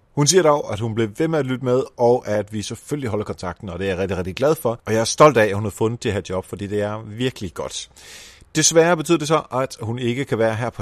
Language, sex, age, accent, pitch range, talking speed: Danish, male, 30-49, native, 105-150 Hz, 295 wpm